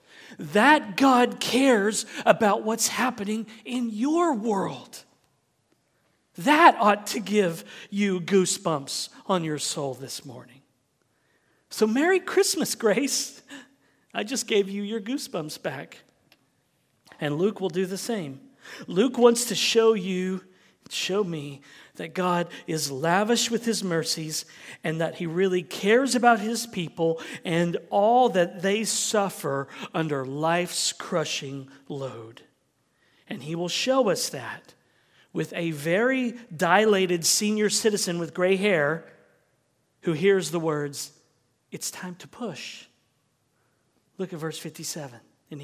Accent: American